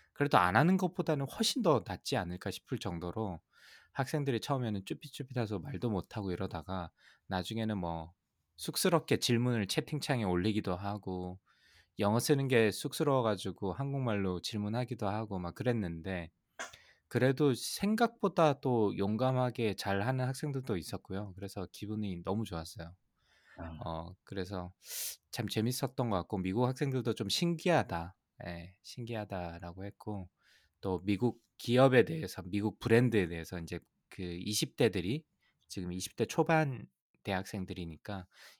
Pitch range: 90-125 Hz